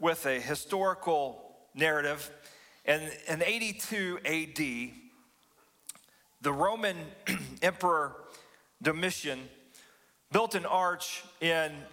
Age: 40-59